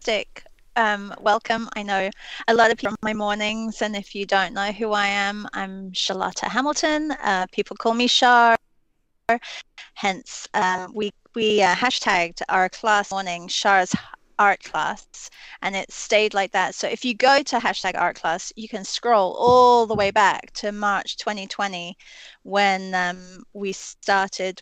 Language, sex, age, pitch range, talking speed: English, female, 30-49, 195-235 Hz, 165 wpm